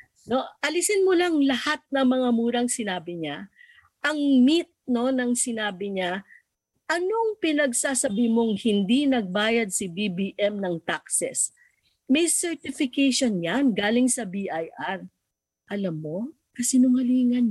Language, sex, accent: English, female, Filipino